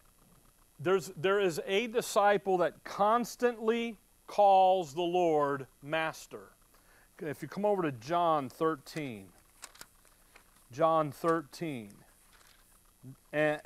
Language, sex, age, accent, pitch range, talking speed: English, male, 40-59, American, 155-195 Hz, 90 wpm